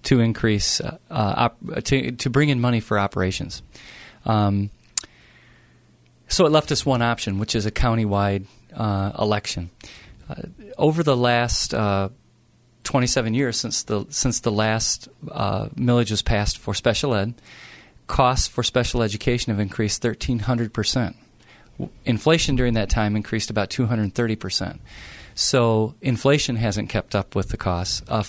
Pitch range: 105-120 Hz